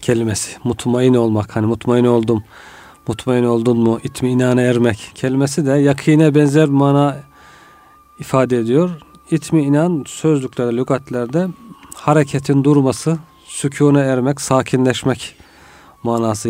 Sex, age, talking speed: male, 40-59, 105 wpm